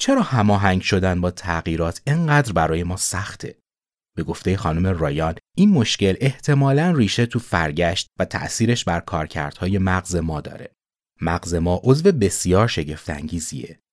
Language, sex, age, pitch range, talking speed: Persian, male, 30-49, 85-120 Hz, 140 wpm